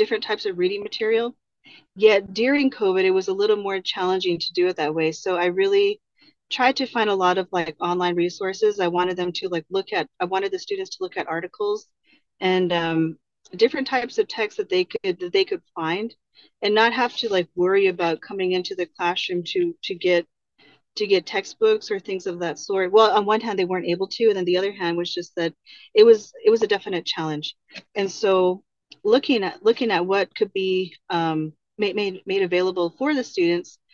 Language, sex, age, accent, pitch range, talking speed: English, female, 30-49, American, 180-275 Hz, 215 wpm